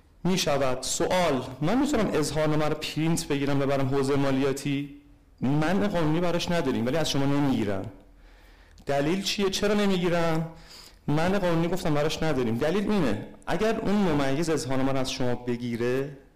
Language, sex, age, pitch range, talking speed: Persian, male, 30-49, 125-170 Hz, 160 wpm